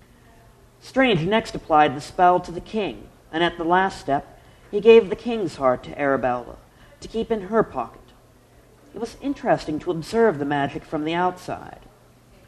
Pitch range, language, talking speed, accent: 145-225 Hz, English, 170 wpm, American